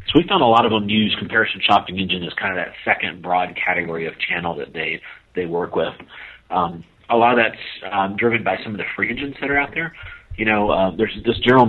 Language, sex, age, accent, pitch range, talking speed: English, male, 40-59, American, 90-105 Hz, 245 wpm